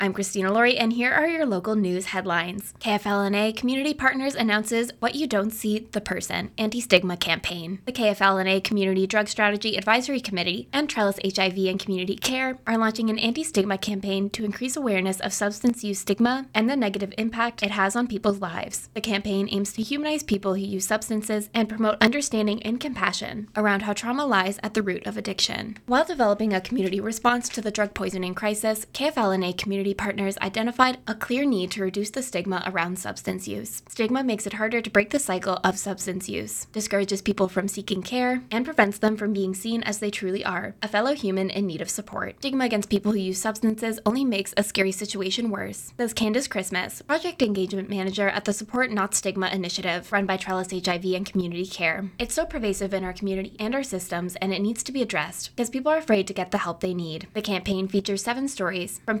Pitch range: 190-230 Hz